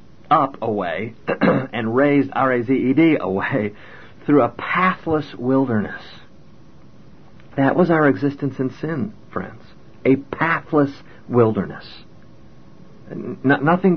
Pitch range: 100-140 Hz